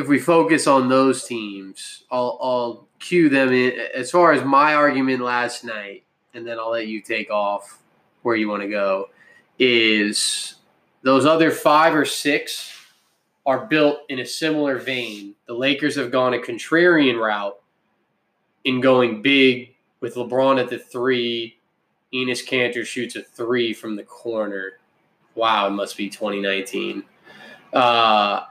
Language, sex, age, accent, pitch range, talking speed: English, male, 20-39, American, 120-140 Hz, 145 wpm